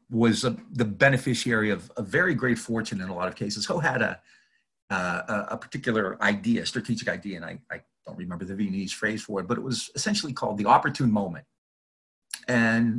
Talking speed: 195 wpm